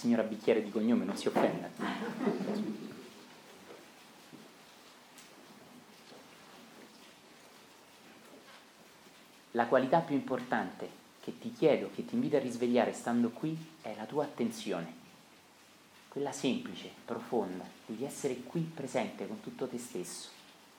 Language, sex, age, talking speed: Italian, male, 30-49, 105 wpm